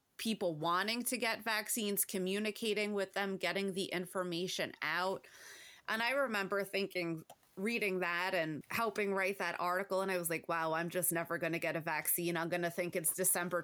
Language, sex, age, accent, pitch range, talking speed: English, female, 30-49, American, 170-205 Hz, 185 wpm